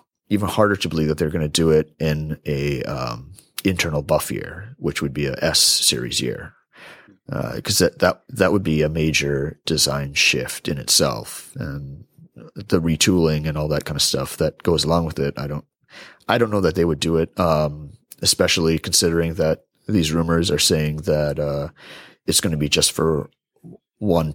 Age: 30-49